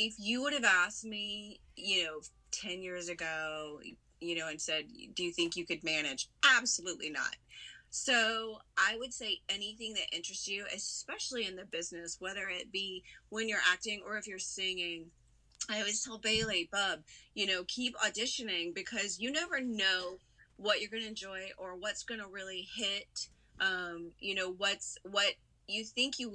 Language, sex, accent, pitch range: English, female, American, 175-220 Hz